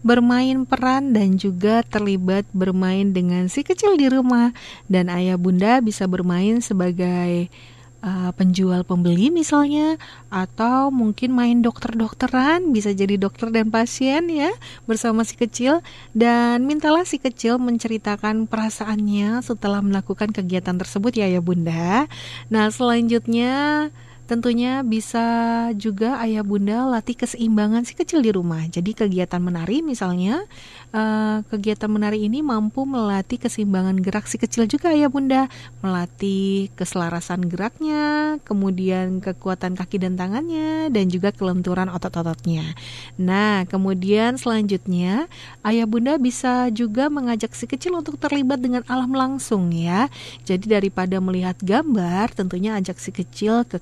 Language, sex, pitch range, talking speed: Indonesian, female, 185-250 Hz, 125 wpm